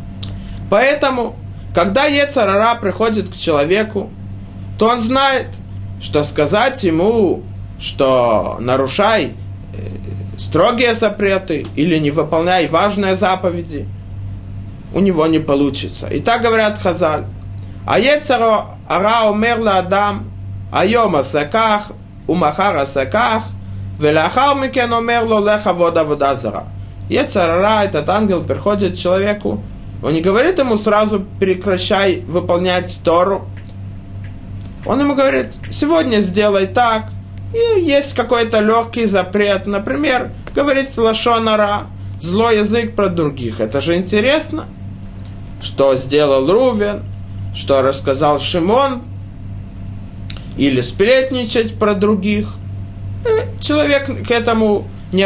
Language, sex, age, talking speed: Russian, male, 20-39, 90 wpm